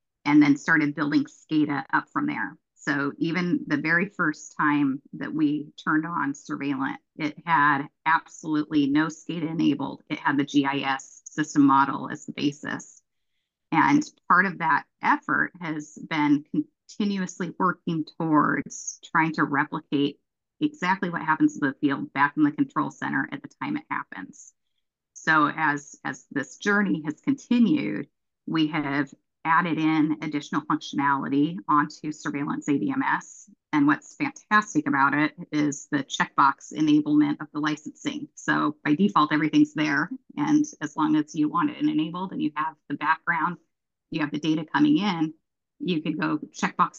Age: 30-49